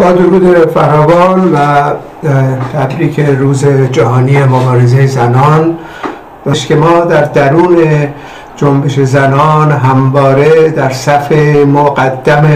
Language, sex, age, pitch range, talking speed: Persian, male, 60-79, 135-155 Hz, 90 wpm